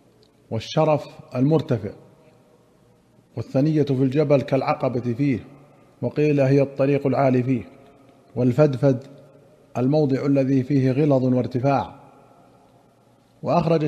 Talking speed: 80 wpm